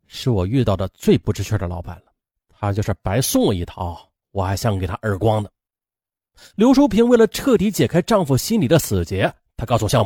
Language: Chinese